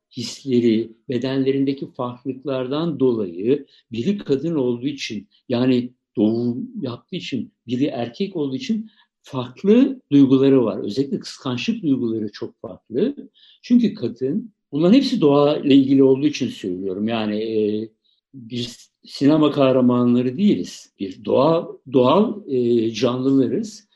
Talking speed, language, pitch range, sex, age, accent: 115 wpm, Turkish, 120-185 Hz, male, 60-79, native